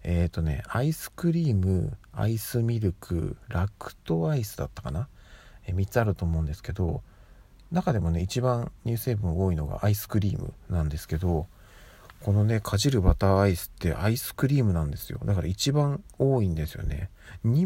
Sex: male